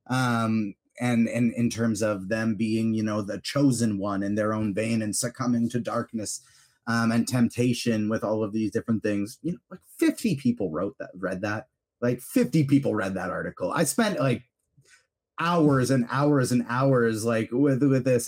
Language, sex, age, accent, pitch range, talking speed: English, male, 30-49, American, 120-165 Hz, 185 wpm